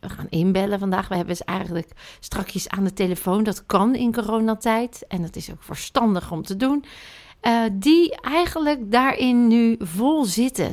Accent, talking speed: Dutch, 175 wpm